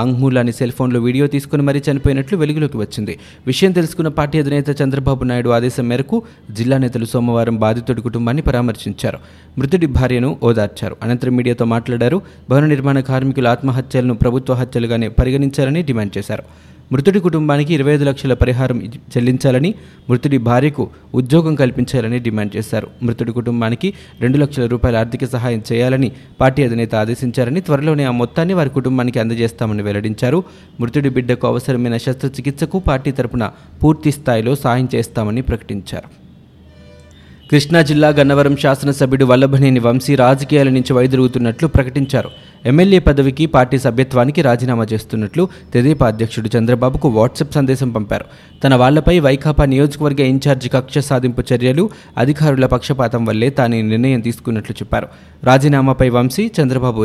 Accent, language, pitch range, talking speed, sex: native, Telugu, 120-140 Hz, 125 wpm, male